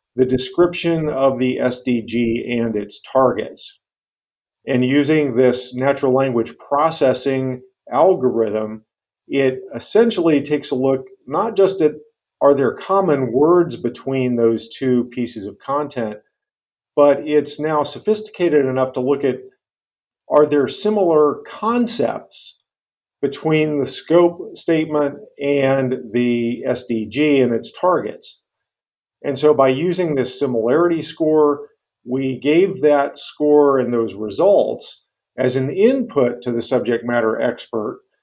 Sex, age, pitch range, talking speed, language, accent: male, 50-69, 125-155 Hz, 120 wpm, English, American